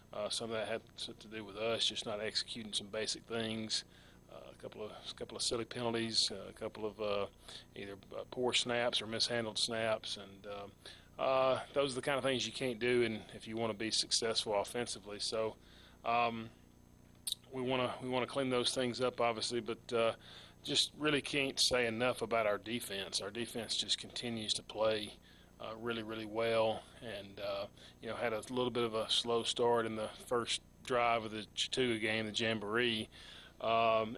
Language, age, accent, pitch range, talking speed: English, 30-49, American, 110-120 Hz, 195 wpm